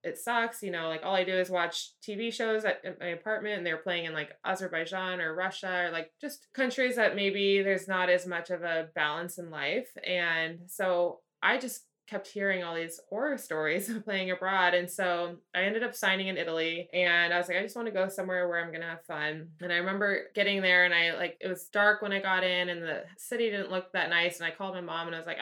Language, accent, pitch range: English, American, 175-210 Hz